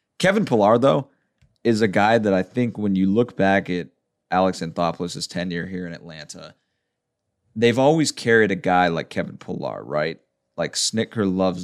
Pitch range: 85-105 Hz